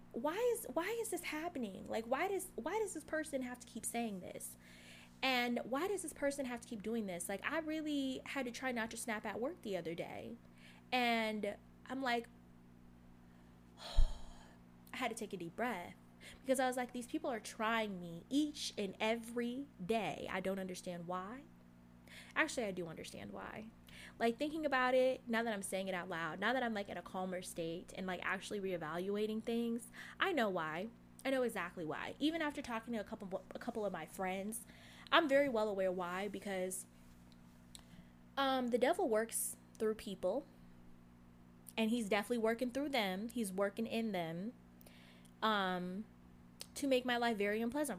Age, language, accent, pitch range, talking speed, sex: 20-39, English, American, 170-245 Hz, 185 wpm, female